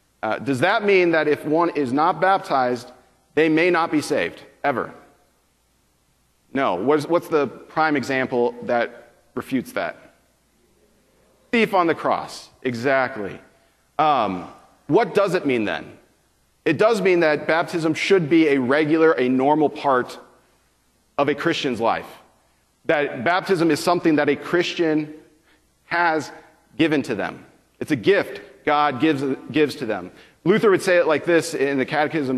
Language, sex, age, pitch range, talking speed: English, male, 40-59, 130-170 Hz, 150 wpm